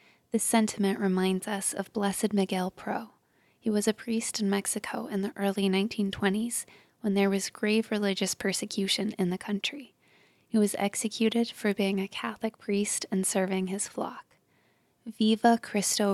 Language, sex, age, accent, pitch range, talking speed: English, female, 20-39, American, 190-220 Hz, 155 wpm